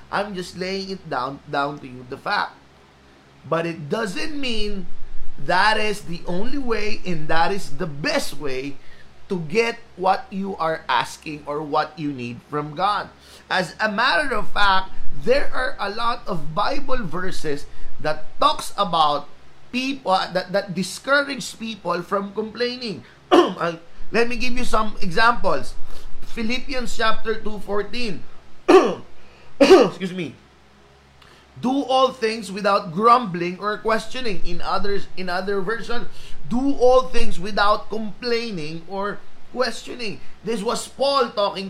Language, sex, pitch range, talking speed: Filipino, male, 165-230 Hz, 135 wpm